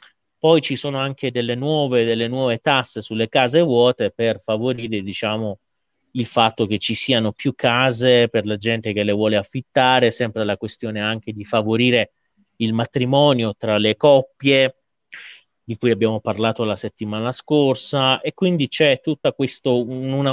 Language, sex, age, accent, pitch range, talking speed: Italian, male, 30-49, native, 115-140 Hz, 155 wpm